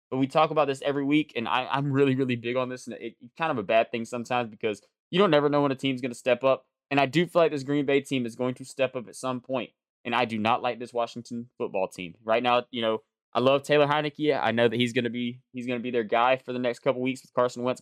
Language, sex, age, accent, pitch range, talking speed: English, male, 20-39, American, 120-150 Hz, 295 wpm